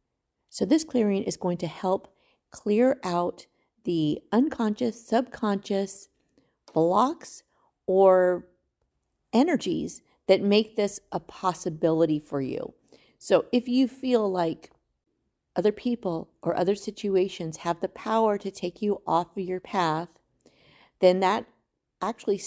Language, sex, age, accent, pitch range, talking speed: English, female, 40-59, American, 170-210 Hz, 120 wpm